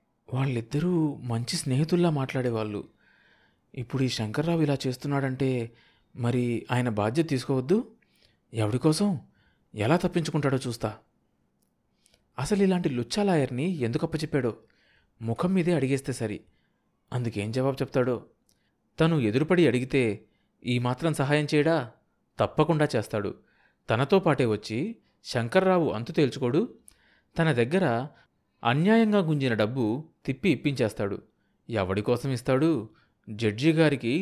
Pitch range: 115-165 Hz